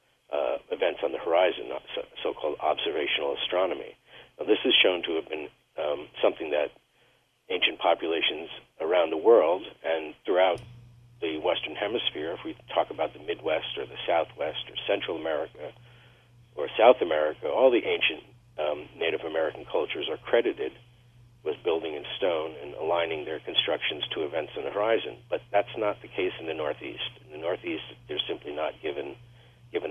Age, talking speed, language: 50-69, 160 wpm, English